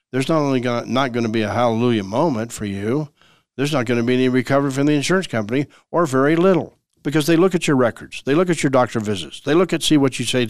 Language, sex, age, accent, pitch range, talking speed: English, male, 60-79, American, 115-140 Hz, 265 wpm